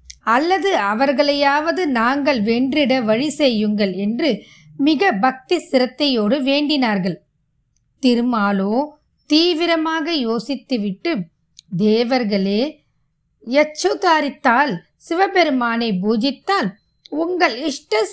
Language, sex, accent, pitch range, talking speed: Tamil, female, native, 220-295 Hz, 45 wpm